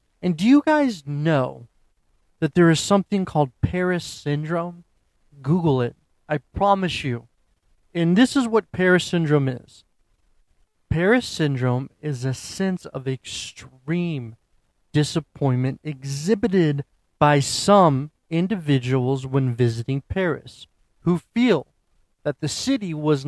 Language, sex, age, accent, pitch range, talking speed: English, male, 30-49, American, 130-180 Hz, 115 wpm